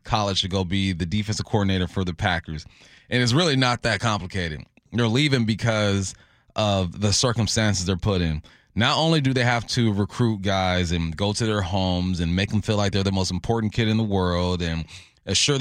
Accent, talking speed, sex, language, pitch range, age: American, 205 wpm, male, English, 100-125 Hz, 20-39